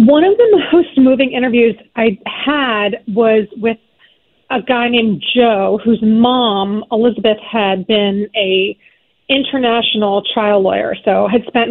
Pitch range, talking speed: 205-250 Hz, 135 wpm